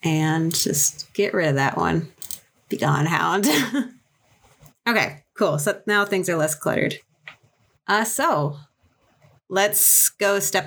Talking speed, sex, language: 130 wpm, female, English